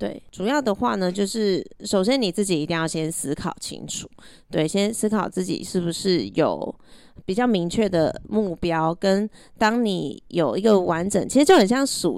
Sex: female